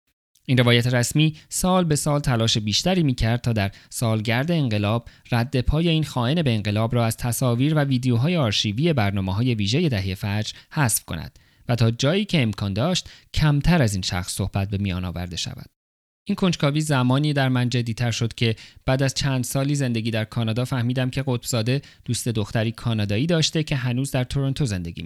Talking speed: 175 wpm